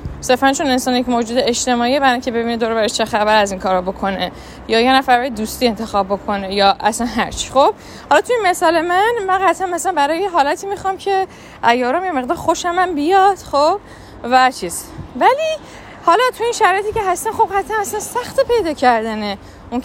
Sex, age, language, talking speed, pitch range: female, 20-39, Persian, 190 wpm, 210-330 Hz